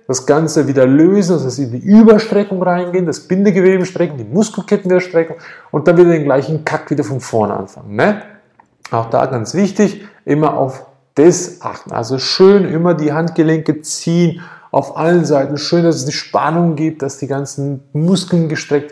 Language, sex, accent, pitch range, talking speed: German, male, German, 135-175 Hz, 170 wpm